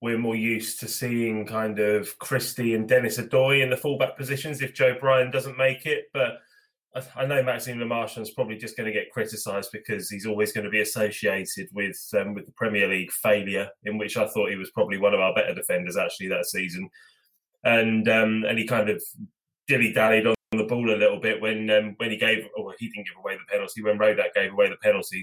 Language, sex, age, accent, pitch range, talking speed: English, male, 20-39, British, 110-145 Hz, 230 wpm